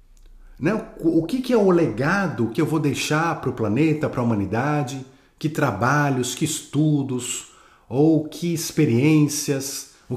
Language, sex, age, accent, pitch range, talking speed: Portuguese, male, 50-69, Brazilian, 120-165 Hz, 135 wpm